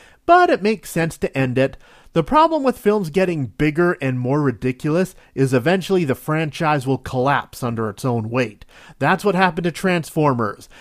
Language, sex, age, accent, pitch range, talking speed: English, male, 40-59, American, 130-190 Hz, 170 wpm